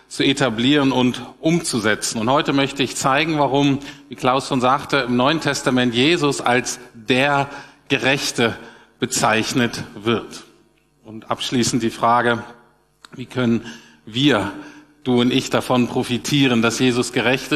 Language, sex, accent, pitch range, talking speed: German, male, German, 125-150 Hz, 130 wpm